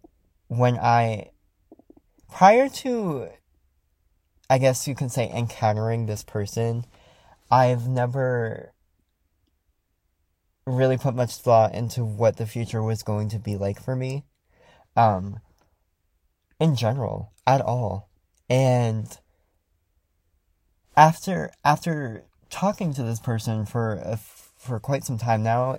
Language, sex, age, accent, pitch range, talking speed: English, male, 20-39, American, 95-125 Hz, 110 wpm